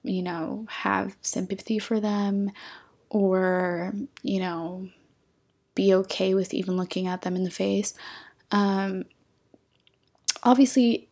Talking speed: 115 wpm